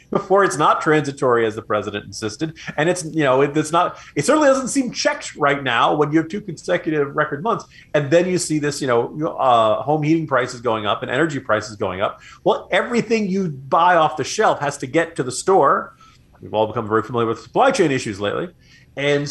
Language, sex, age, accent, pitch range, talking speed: English, male, 40-59, American, 120-165 Hz, 220 wpm